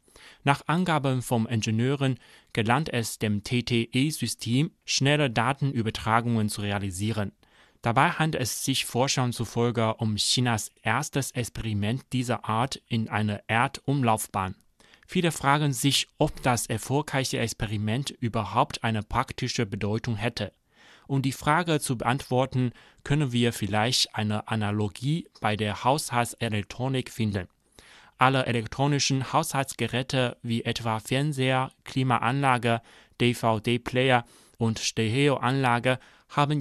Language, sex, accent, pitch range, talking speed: German, male, German, 110-135 Hz, 110 wpm